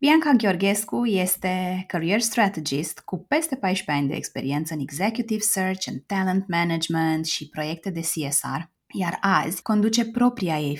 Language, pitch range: Romanian, 170-235 Hz